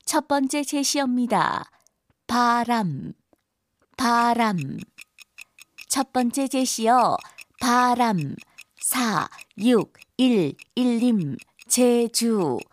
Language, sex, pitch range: Korean, female, 230-260 Hz